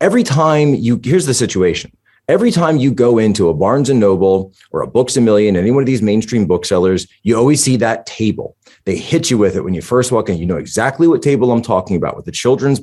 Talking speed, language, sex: 245 wpm, English, male